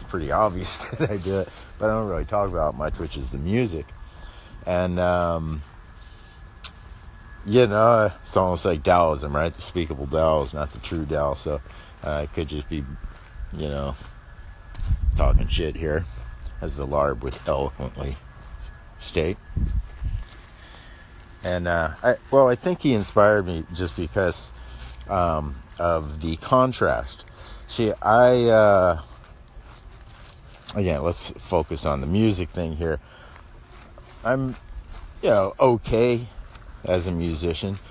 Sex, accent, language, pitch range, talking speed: male, American, English, 75-95 Hz, 135 wpm